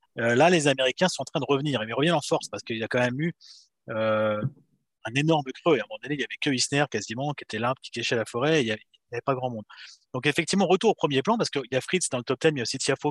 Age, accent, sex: 30-49, French, male